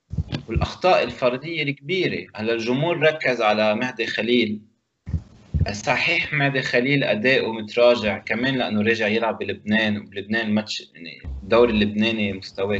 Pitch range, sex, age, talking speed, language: 105-140 Hz, male, 20-39, 115 wpm, Arabic